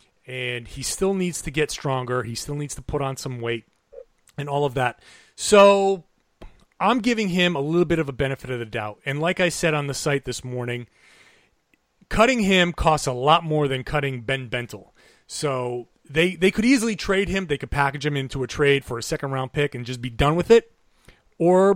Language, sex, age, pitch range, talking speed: English, male, 30-49, 130-175 Hz, 210 wpm